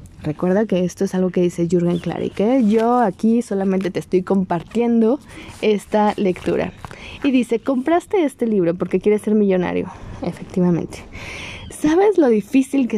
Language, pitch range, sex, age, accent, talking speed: Spanish, 190-245 Hz, female, 20-39, Mexican, 155 wpm